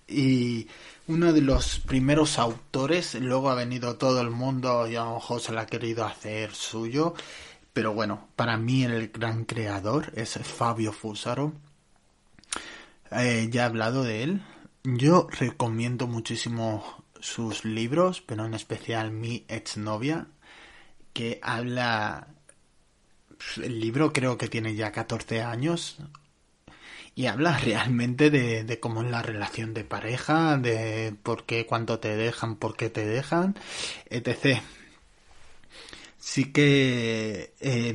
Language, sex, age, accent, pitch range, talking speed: Spanish, male, 30-49, Spanish, 115-135 Hz, 130 wpm